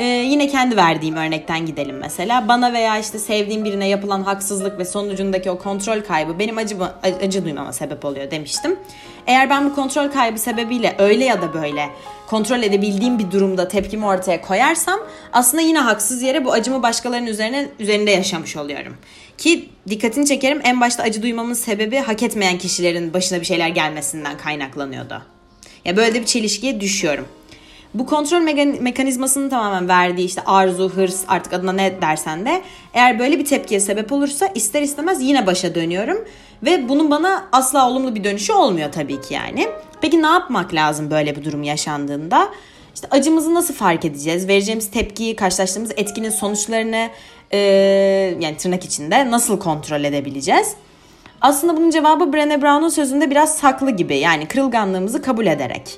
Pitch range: 180-265 Hz